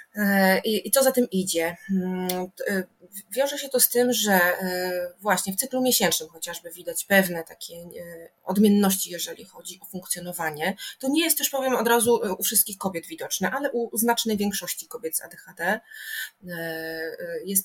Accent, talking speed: native, 145 wpm